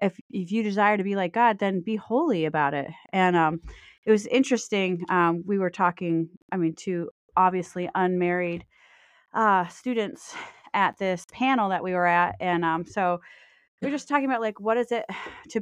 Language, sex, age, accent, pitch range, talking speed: English, female, 30-49, American, 180-225 Hz, 190 wpm